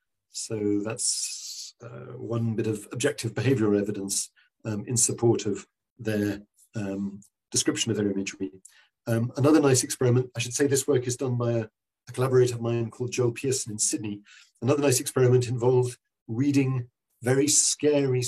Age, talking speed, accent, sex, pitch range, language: 50-69, 160 wpm, British, male, 110-125 Hz, Spanish